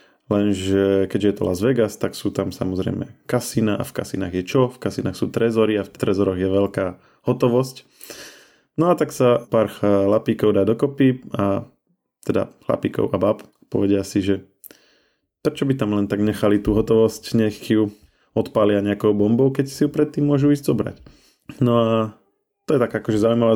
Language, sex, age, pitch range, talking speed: Slovak, male, 20-39, 100-120 Hz, 175 wpm